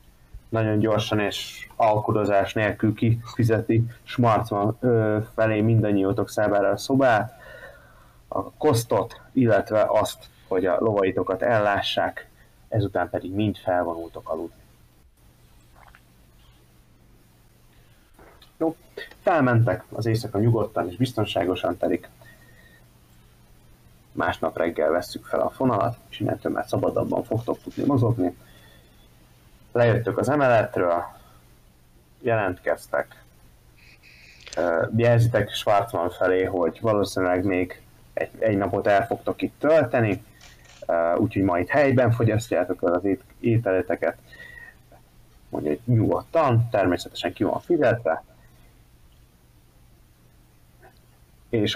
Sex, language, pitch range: male, Hungarian, 85-115 Hz